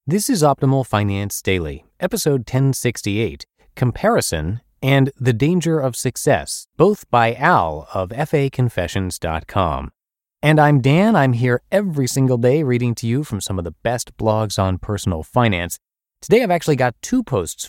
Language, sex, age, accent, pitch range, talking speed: English, male, 30-49, American, 90-135 Hz, 150 wpm